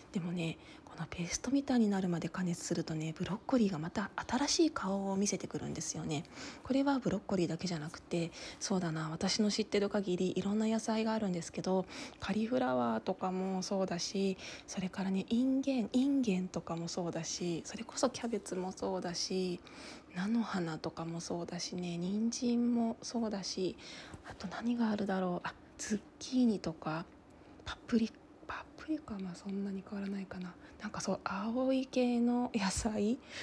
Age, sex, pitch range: 20-39, female, 175-245 Hz